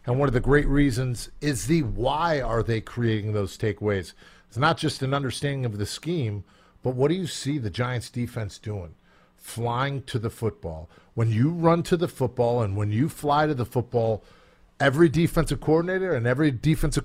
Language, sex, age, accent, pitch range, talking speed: English, male, 50-69, American, 120-165 Hz, 190 wpm